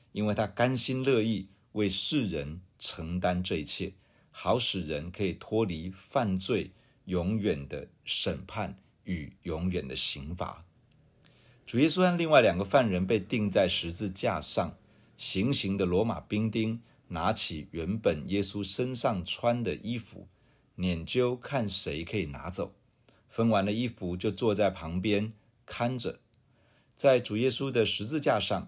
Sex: male